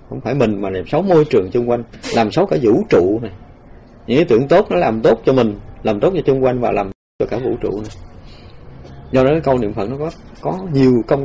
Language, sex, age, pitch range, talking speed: Vietnamese, male, 20-39, 105-135 Hz, 260 wpm